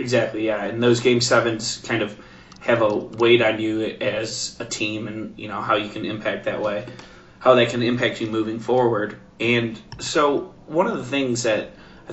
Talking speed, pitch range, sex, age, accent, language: 200 wpm, 105-120 Hz, male, 20-39, American, English